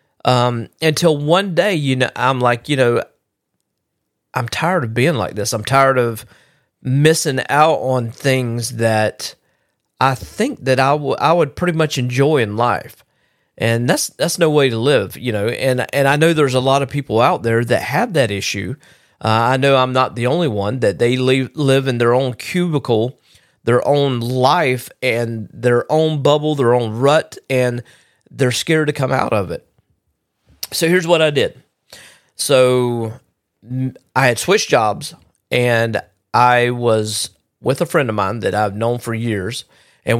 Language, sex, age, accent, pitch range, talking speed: English, male, 40-59, American, 115-140 Hz, 175 wpm